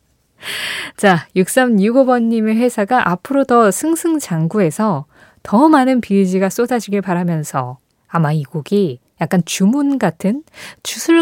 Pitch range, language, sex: 150-230 Hz, Korean, female